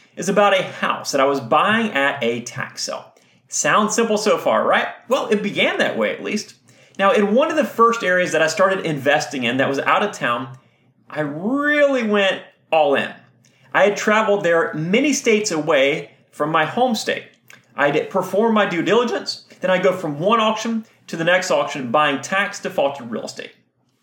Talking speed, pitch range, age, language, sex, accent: 190 wpm, 160-220 Hz, 30-49, English, male, American